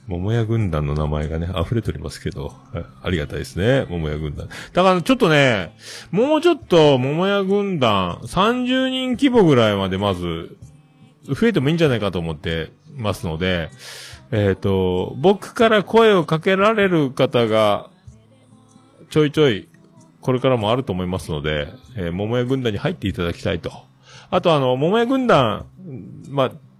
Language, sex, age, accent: Japanese, male, 40-59, native